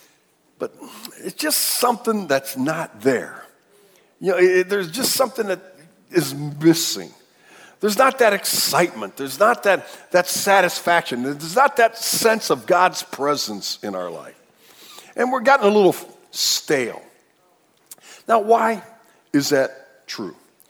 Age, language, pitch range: 50-69, English, 155-230 Hz